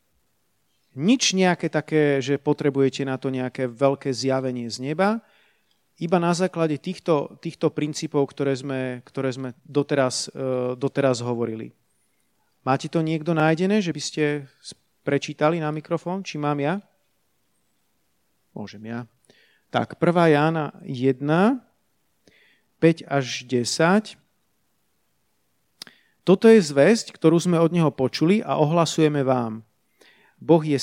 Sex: male